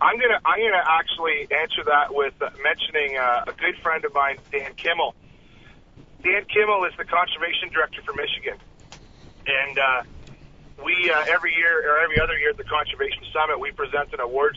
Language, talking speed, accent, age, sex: English, 175 wpm, American, 40-59, male